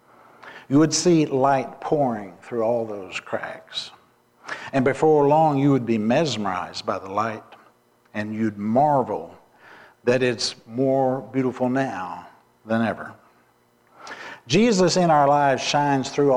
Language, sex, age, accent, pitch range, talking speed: English, male, 60-79, American, 105-135 Hz, 130 wpm